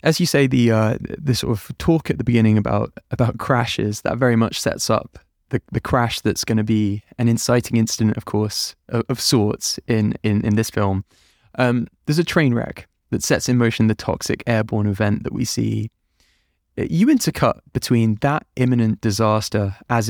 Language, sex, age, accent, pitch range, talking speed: English, male, 20-39, British, 110-130 Hz, 190 wpm